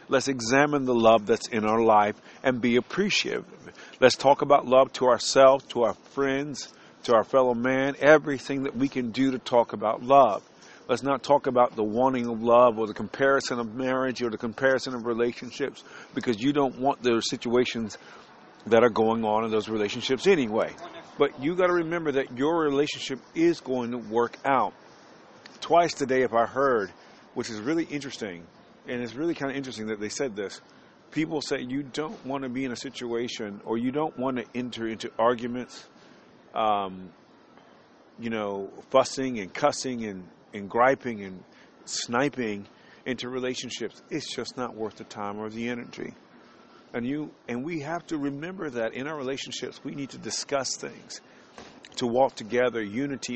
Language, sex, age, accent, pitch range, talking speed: English, male, 50-69, American, 115-140 Hz, 175 wpm